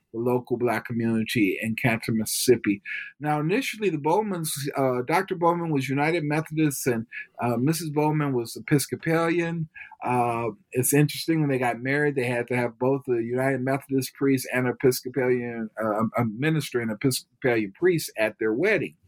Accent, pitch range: American, 125-155 Hz